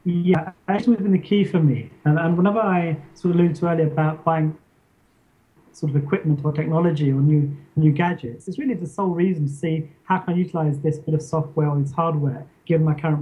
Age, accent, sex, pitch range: 30-49, British, male, 150-175 Hz